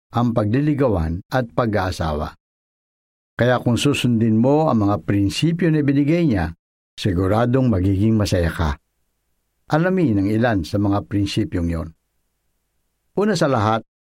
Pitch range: 90-135 Hz